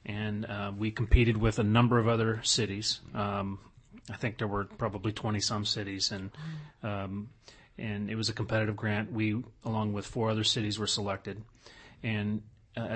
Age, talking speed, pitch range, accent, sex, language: 30-49, 165 wpm, 105-120 Hz, American, male, English